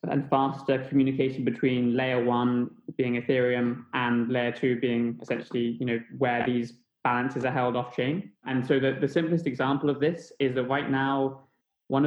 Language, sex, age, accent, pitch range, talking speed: English, male, 20-39, British, 125-140 Hz, 175 wpm